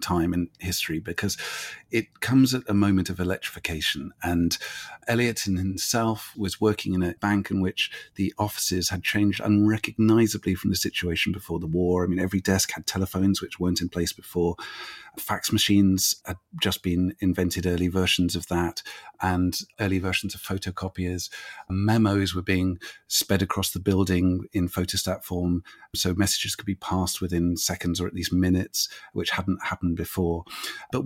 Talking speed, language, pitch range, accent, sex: 160 wpm, English, 90-105 Hz, British, male